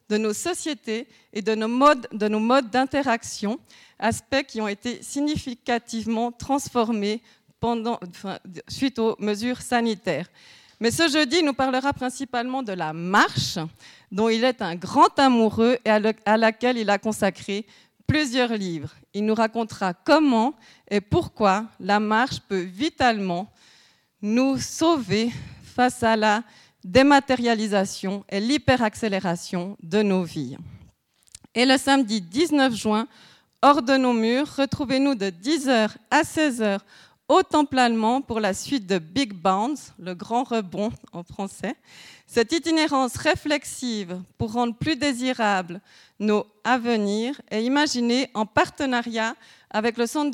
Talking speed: 135 wpm